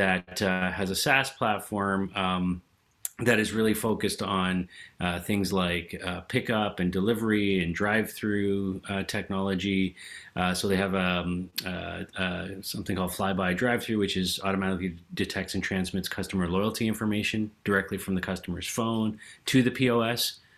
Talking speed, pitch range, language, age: 155 wpm, 95-110 Hz, English, 30-49